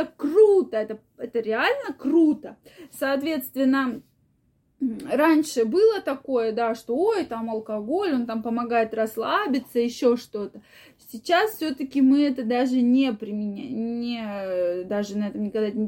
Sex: female